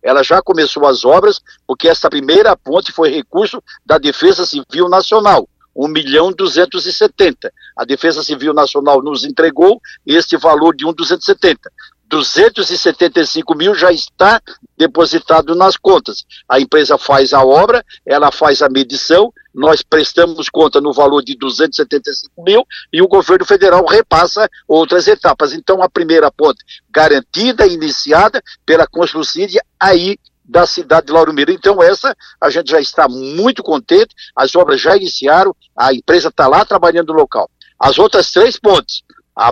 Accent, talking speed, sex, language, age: Brazilian, 145 wpm, male, Portuguese, 60-79